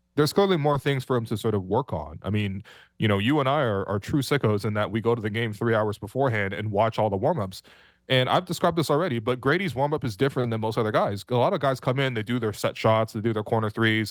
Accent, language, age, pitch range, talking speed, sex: American, English, 20-39, 100-130 Hz, 285 wpm, male